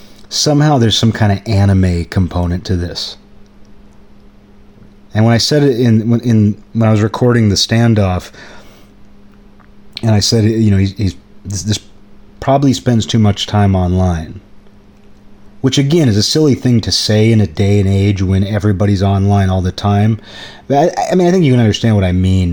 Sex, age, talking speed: male, 30-49, 185 wpm